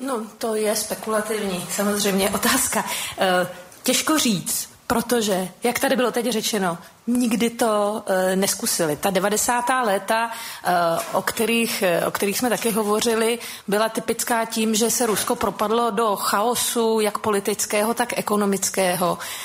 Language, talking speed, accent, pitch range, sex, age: Czech, 125 wpm, native, 195-230 Hz, female, 40-59